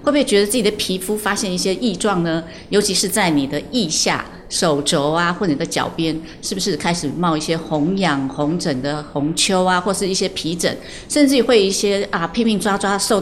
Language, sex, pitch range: Chinese, female, 160-210 Hz